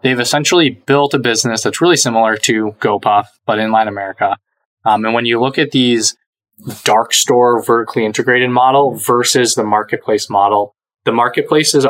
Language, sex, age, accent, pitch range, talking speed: English, male, 20-39, American, 110-130 Hz, 160 wpm